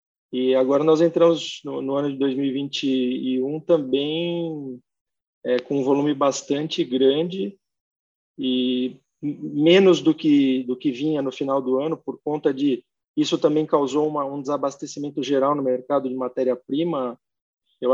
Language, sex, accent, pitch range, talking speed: Portuguese, male, Brazilian, 135-165 Hz, 145 wpm